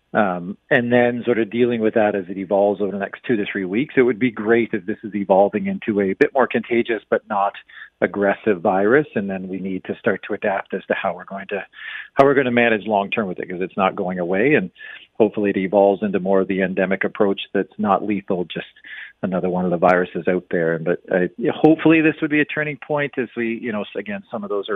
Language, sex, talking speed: English, male, 245 wpm